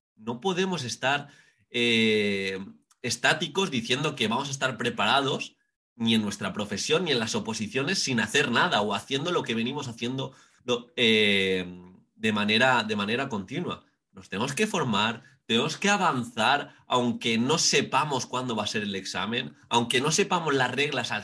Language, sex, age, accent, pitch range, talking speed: Spanish, male, 30-49, Spanish, 105-155 Hz, 155 wpm